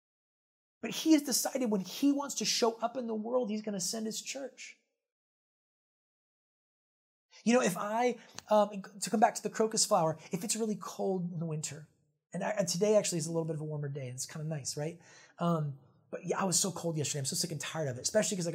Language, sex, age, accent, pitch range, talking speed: English, male, 30-49, American, 150-200 Hz, 240 wpm